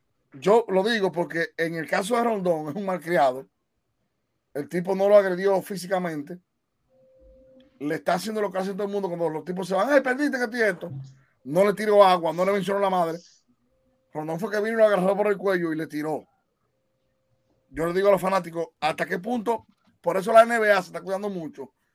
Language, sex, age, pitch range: Spanish, male, 30-49, 160-205 Hz